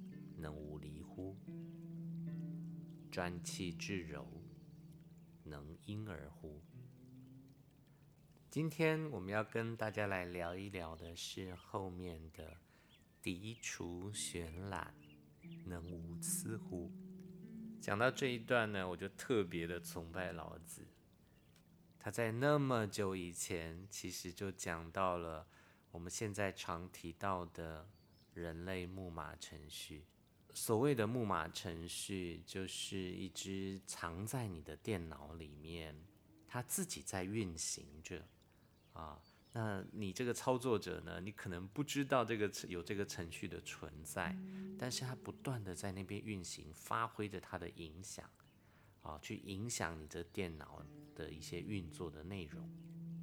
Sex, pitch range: male, 85-125 Hz